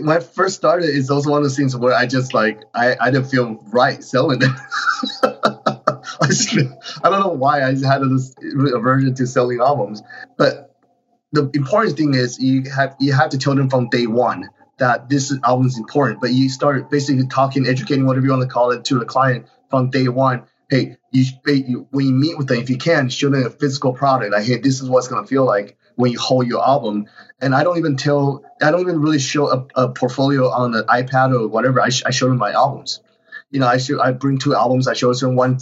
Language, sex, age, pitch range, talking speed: English, male, 20-39, 125-140 Hz, 235 wpm